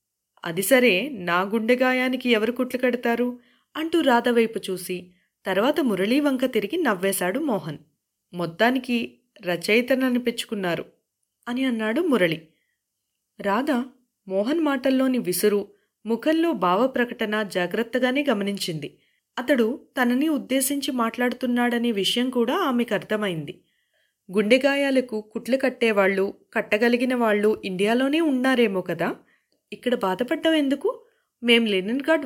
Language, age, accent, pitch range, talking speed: Telugu, 20-39, native, 190-260 Hz, 100 wpm